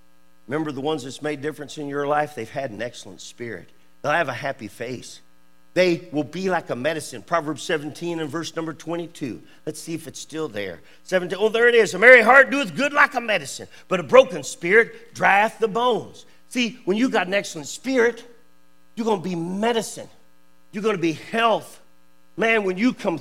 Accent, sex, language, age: American, male, English, 50-69